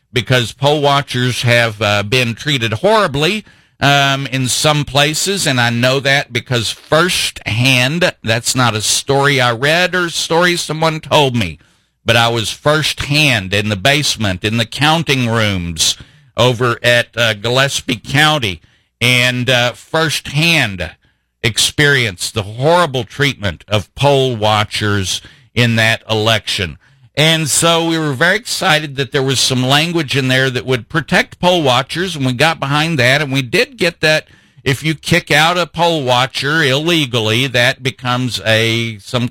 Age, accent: 50-69, American